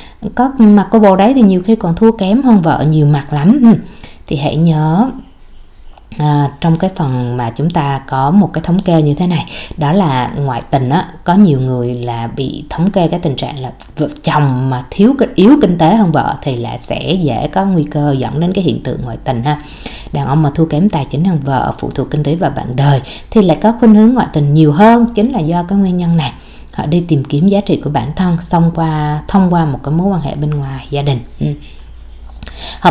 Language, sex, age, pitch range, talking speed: Vietnamese, female, 20-39, 145-210 Hz, 235 wpm